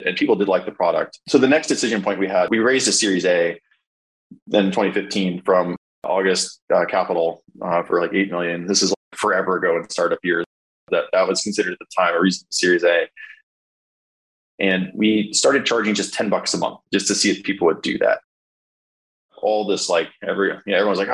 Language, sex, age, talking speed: English, male, 20-39, 205 wpm